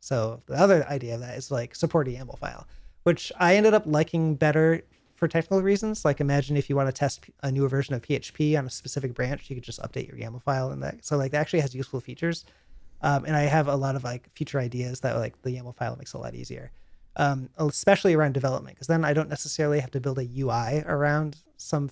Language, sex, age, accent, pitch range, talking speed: English, male, 30-49, American, 120-150 Hz, 240 wpm